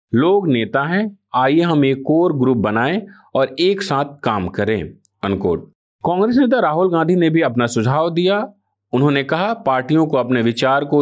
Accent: native